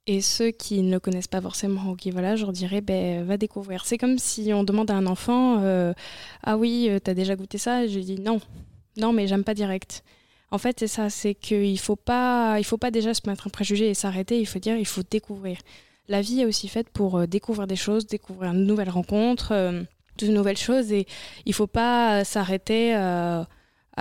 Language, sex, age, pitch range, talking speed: French, female, 20-39, 190-225 Hz, 220 wpm